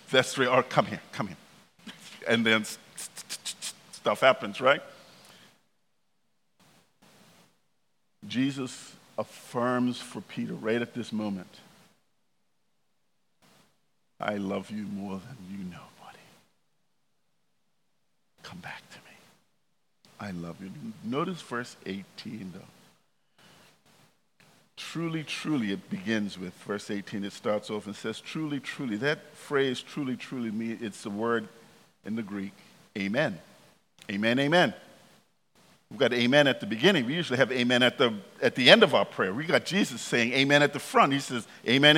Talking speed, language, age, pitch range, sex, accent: 145 wpm, English, 50-69, 105-145 Hz, male, American